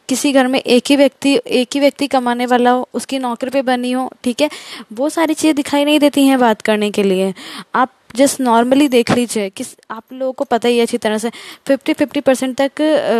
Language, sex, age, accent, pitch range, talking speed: Hindi, female, 20-39, native, 220-275 Hz, 220 wpm